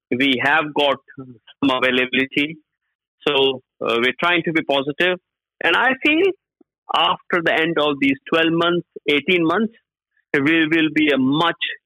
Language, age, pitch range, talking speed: English, 50-69, 135-190 Hz, 145 wpm